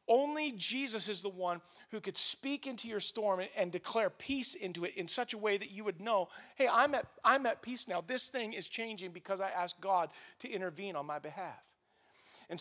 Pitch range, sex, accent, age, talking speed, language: 180-225 Hz, male, American, 40-59, 220 wpm, English